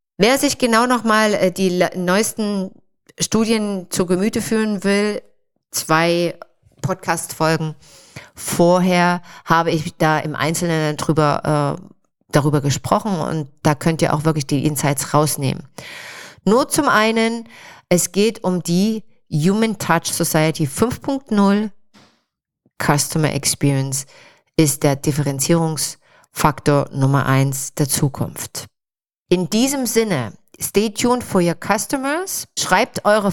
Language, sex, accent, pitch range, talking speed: German, female, German, 155-210 Hz, 115 wpm